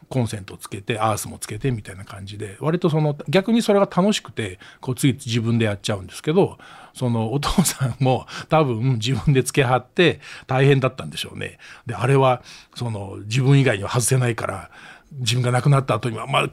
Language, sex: Japanese, male